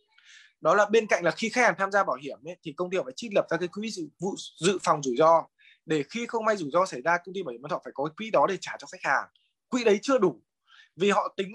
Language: Vietnamese